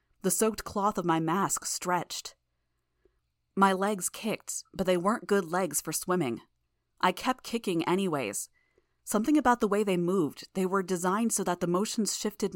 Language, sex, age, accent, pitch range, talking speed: English, female, 20-39, American, 160-195 Hz, 165 wpm